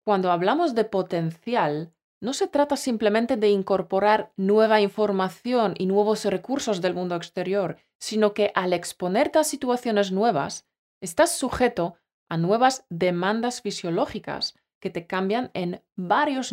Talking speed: 130 wpm